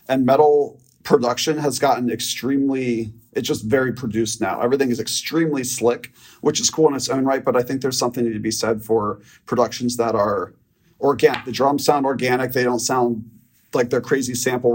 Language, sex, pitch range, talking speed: English, male, 115-135 Hz, 185 wpm